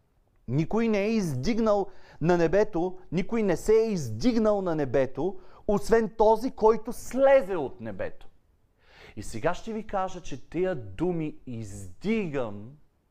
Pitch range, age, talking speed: 130-215 Hz, 40-59, 130 wpm